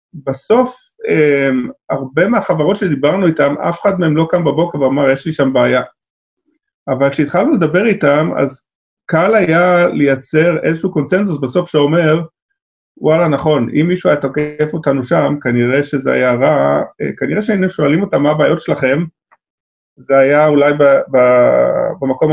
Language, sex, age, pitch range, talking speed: Hebrew, male, 30-49, 140-180 Hz, 145 wpm